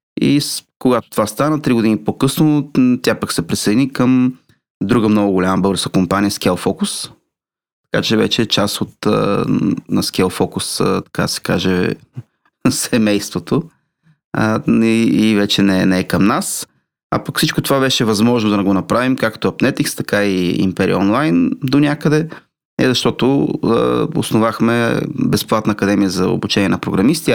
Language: Bulgarian